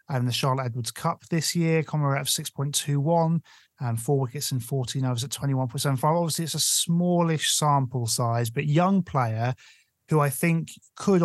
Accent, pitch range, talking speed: British, 125-165 Hz, 170 wpm